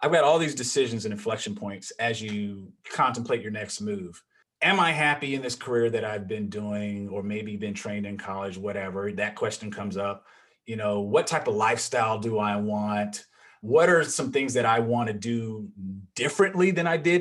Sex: male